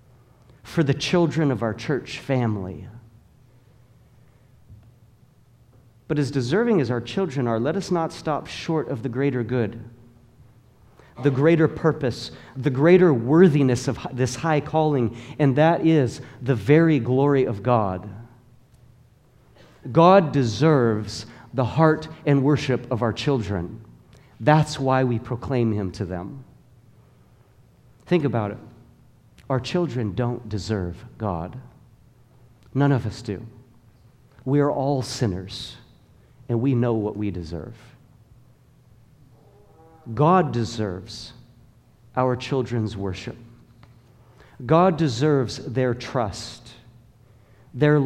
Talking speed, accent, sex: 110 wpm, American, male